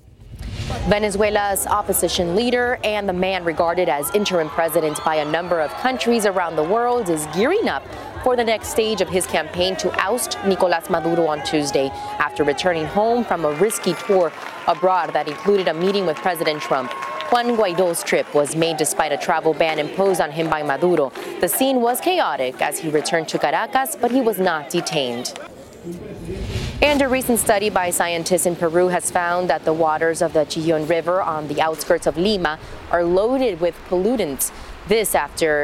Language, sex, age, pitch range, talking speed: English, female, 20-39, 160-210 Hz, 175 wpm